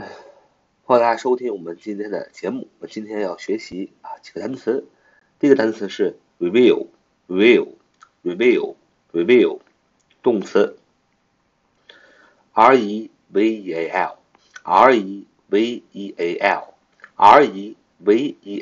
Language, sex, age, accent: Chinese, male, 50-69, native